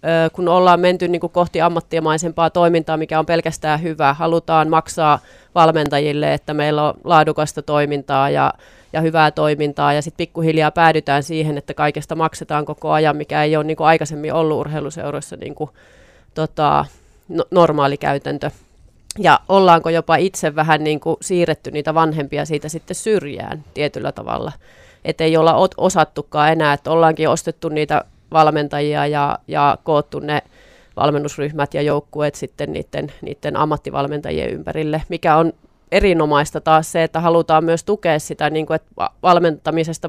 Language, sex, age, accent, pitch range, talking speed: Finnish, female, 30-49, native, 150-165 Hz, 150 wpm